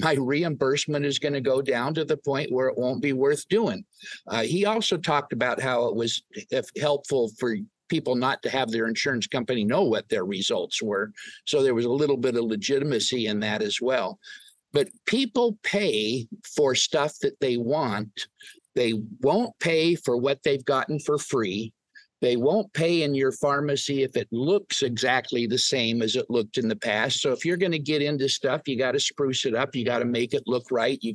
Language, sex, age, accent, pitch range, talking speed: English, male, 50-69, American, 125-180 Hz, 205 wpm